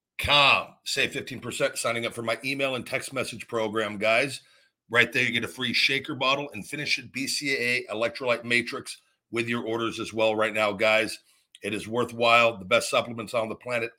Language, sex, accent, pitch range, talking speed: English, male, American, 115-140 Hz, 190 wpm